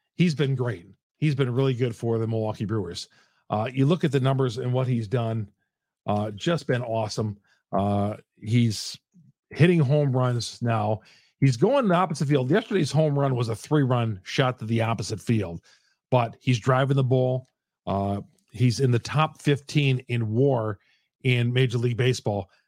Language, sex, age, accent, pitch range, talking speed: English, male, 50-69, American, 115-145 Hz, 170 wpm